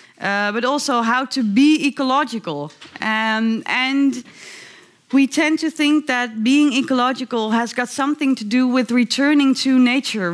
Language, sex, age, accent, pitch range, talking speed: Dutch, female, 20-39, Dutch, 215-260 Hz, 145 wpm